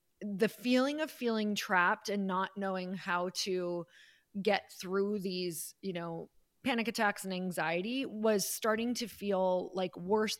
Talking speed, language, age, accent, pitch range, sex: 145 wpm, English, 30-49, American, 190-245 Hz, female